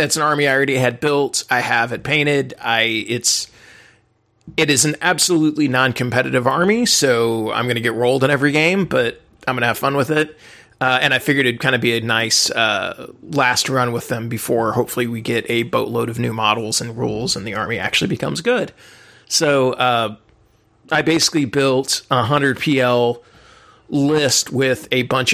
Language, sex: English, male